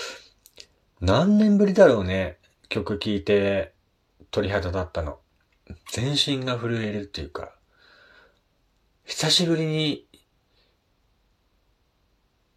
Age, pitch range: 40-59, 85-120 Hz